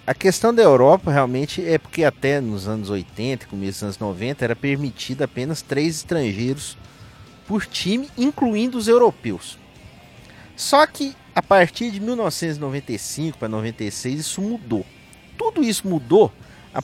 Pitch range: 130-210 Hz